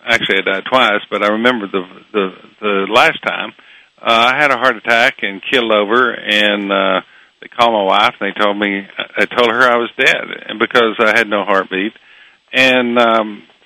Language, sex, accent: English, male, American